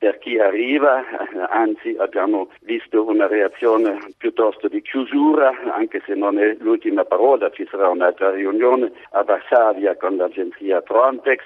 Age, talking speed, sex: 60-79, 135 wpm, male